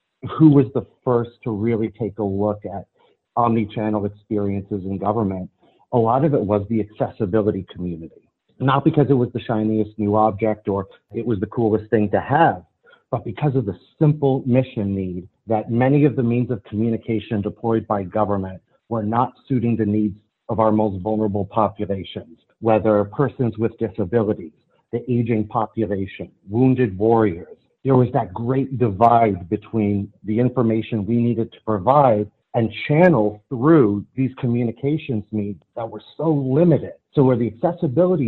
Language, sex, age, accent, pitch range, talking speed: English, male, 40-59, American, 105-125 Hz, 155 wpm